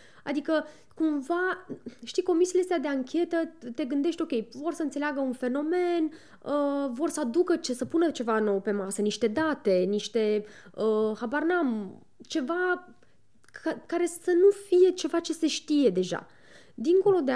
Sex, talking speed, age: female, 150 wpm, 20-39